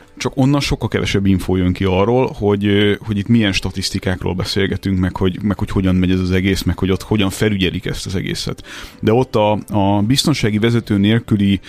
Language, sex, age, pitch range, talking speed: Hungarian, male, 30-49, 95-110 Hz, 195 wpm